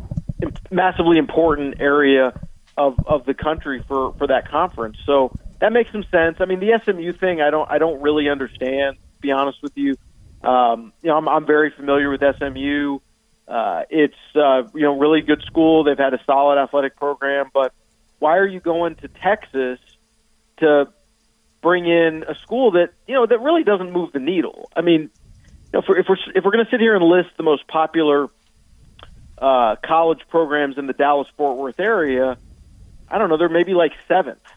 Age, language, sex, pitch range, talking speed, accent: 40-59, English, male, 135-165 Hz, 195 wpm, American